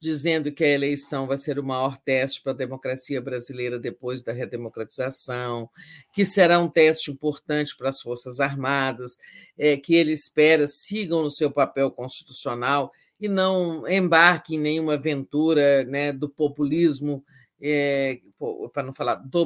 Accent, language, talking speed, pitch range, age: Brazilian, Portuguese, 140 wpm, 135-170 Hz, 50-69